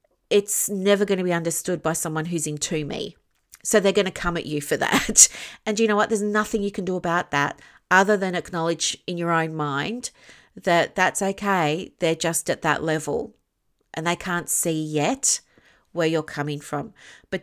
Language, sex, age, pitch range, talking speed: English, female, 40-59, 160-200 Hz, 195 wpm